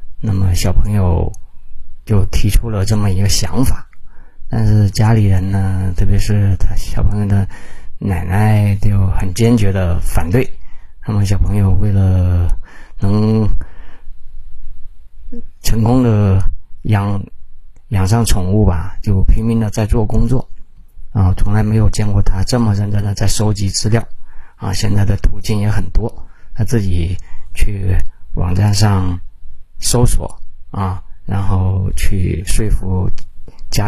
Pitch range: 90-110 Hz